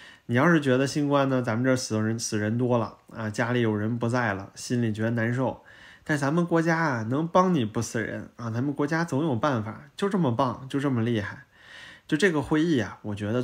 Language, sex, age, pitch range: Chinese, male, 20-39, 110-145 Hz